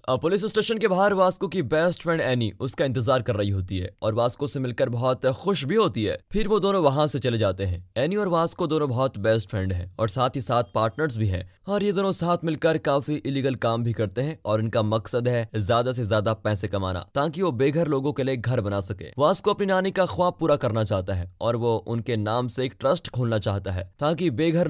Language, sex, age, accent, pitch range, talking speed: Hindi, male, 20-39, native, 110-170 Hz, 240 wpm